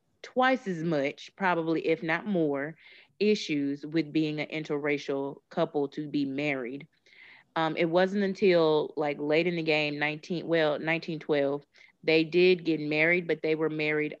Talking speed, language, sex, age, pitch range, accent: 150 wpm, English, female, 20-39, 150-185 Hz, American